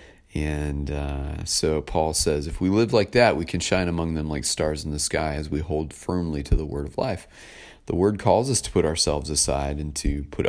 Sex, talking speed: male, 230 wpm